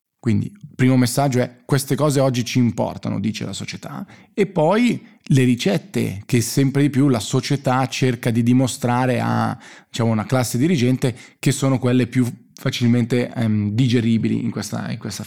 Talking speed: 165 wpm